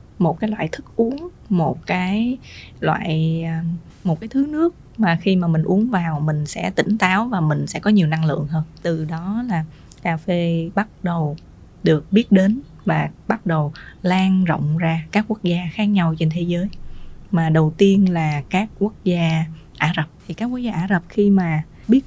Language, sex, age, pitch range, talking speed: Vietnamese, female, 20-39, 165-215 Hz, 195 wpm